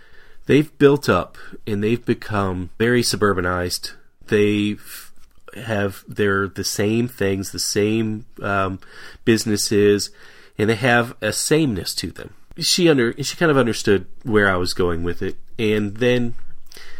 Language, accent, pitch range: English, American, 95-115 Hz